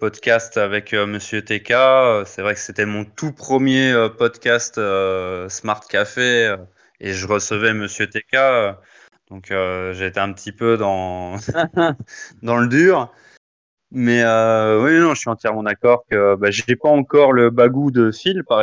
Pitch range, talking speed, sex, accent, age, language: 100-125 Hz, 155 wpm, male, French, 20-39, French